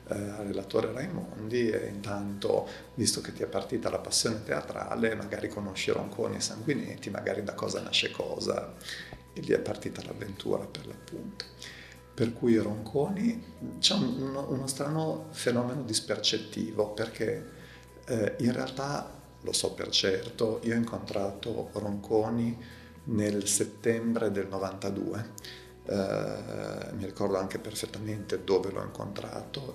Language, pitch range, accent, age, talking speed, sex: Italian, 100-110 Hz, native, 40-59, 125 wpm, male